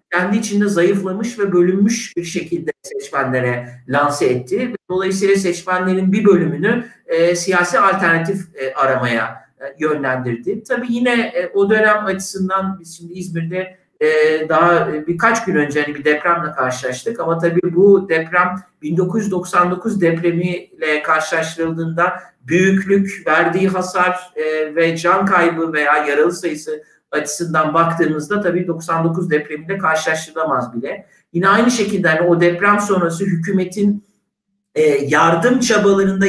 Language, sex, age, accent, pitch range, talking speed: Turkish, male, 60-79, native, 165-205 Hz, 125 wpm